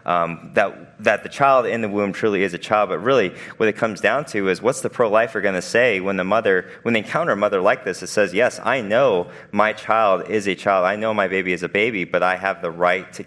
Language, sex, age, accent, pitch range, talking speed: English, male, 30-49, American, 95-120 Hz, 275 wpm